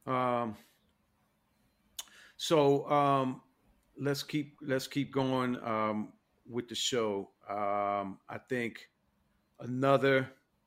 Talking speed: 90 wpm